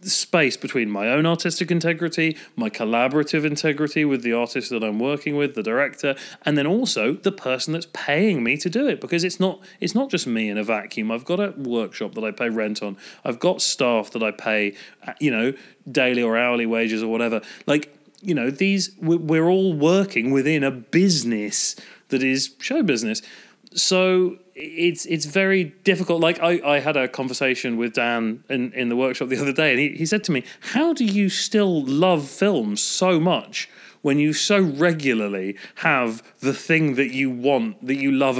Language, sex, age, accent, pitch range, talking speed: English, male, 30-49, British, 130-190 Hz, 190 wpm